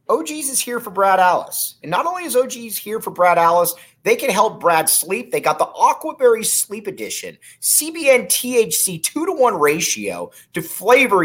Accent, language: American, English